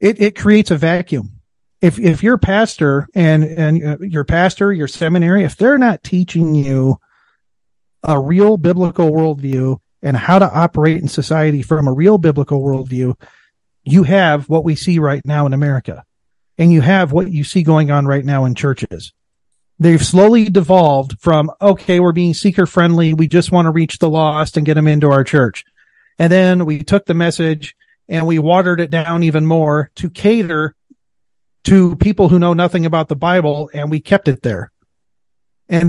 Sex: male